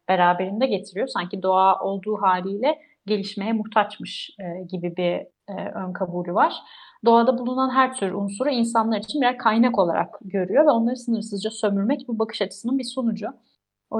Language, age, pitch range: Turkish, 30-49, 195-230 Hz